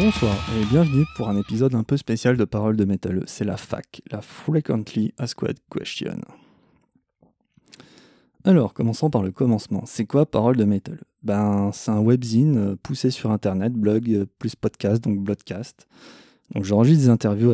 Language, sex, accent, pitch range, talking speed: French, male, French, 105-130 Hz, 155 wpm